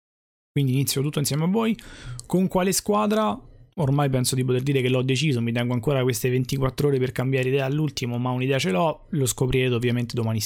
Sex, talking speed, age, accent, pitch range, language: male, 200 wpm, 20-39, native, 115-145 Hz, Italian